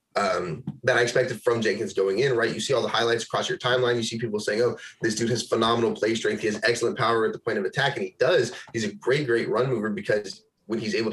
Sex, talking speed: male, 270 wpm